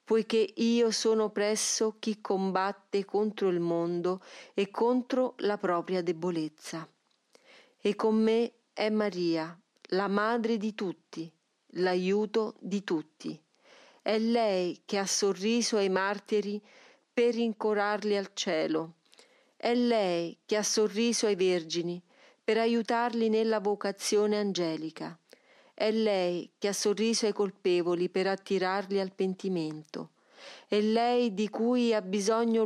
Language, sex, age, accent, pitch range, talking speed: Italian, female, 40-59, native, 185-225 Hz, 120 wpm